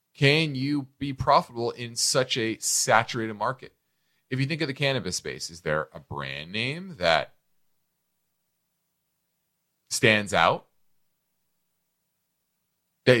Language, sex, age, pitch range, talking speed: English, male, 30-49, 110-145 Hz, 115 wpm